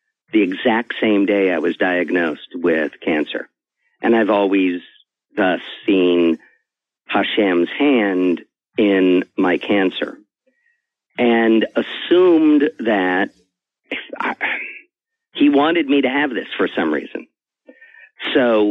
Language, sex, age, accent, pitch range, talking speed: English, male, 50-69, American, 95-150 Hz, 105 wpm